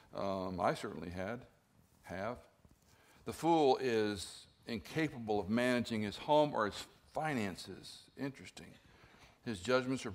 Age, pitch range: 60-79, 100-140 Hz